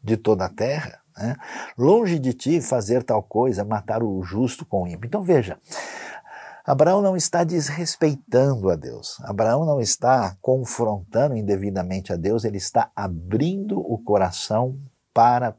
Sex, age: male, 50-69